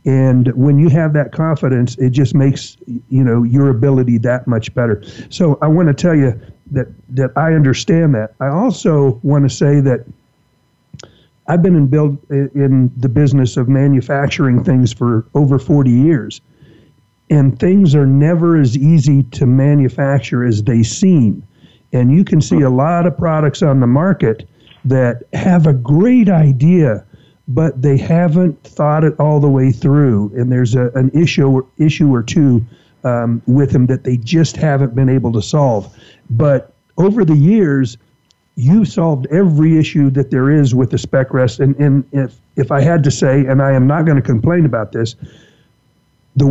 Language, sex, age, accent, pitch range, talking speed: English, male, 50-69, American, 130-160 Hz, 175 wpm